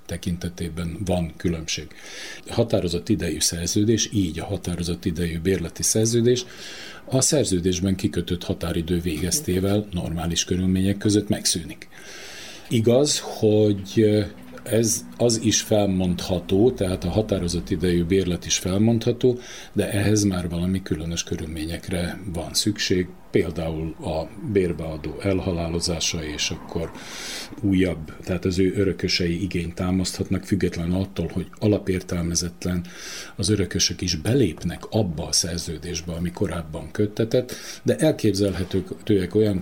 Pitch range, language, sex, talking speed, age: 85-105 Hz, Hungarian, male, 110 wpm, 40-59